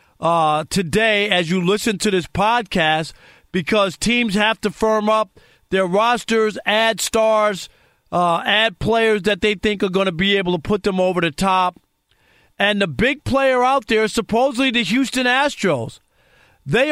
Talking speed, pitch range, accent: 165 wpm, 185-225 Hz, American